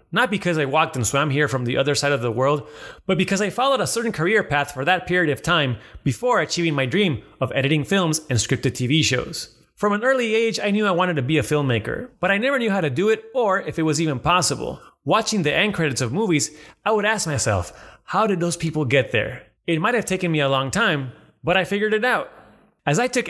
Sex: male